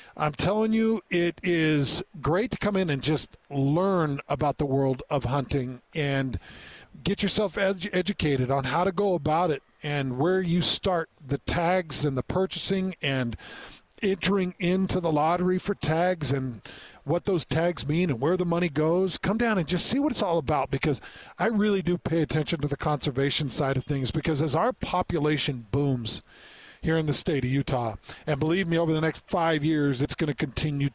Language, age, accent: English, 50-69, American